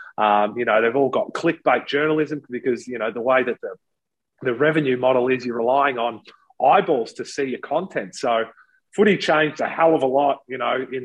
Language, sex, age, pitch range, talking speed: English, male, 30-49, 120-150 Hz, 205 wpm